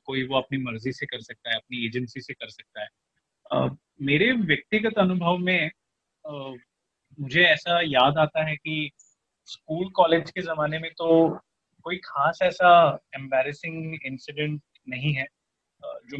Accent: native